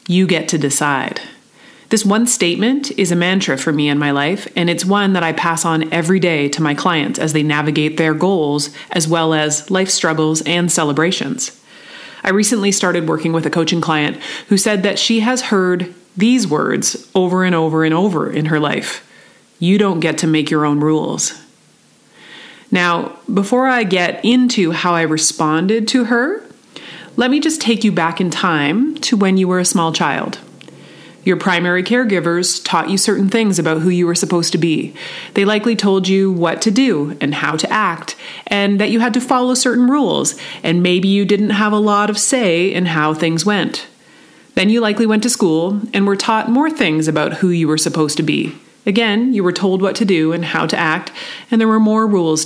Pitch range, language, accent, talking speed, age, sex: 165-215 Hz, English, American, 200 wpm, 30-49, female